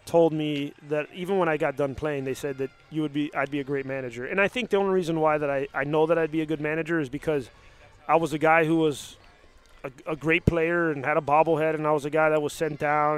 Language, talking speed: English, 280 wpm